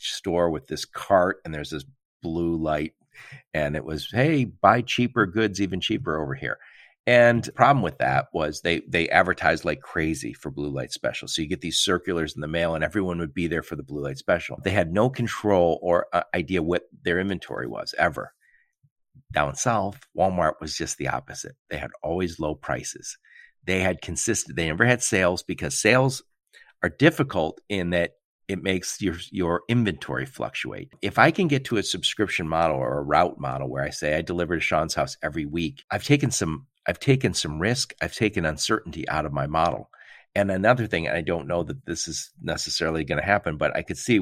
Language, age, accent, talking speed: English, 50-69, American, 200 wpm